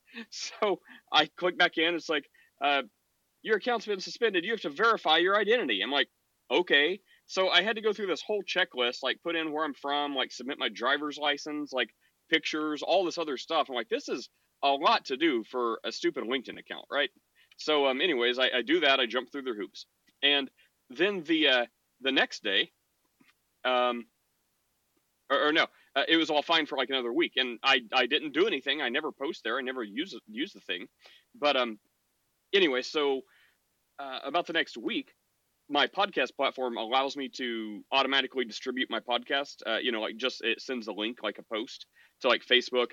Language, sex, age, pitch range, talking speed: English, male, 40-59, 125-180 Hz, 205 wpm